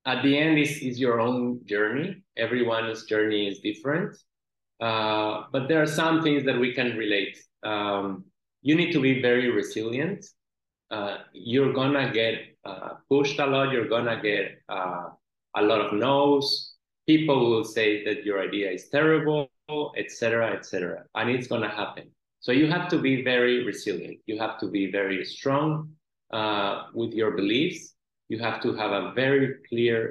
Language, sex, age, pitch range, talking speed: English, male, 30-49, 105-140 Hz, 170 wpm